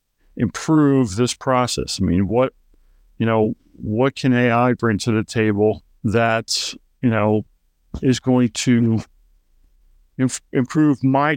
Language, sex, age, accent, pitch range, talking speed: English, male, 50-69, American, 110-130 Hz, 120 wpm